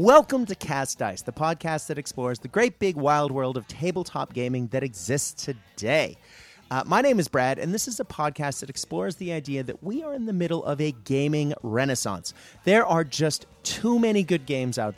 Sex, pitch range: male, 115-175 Hz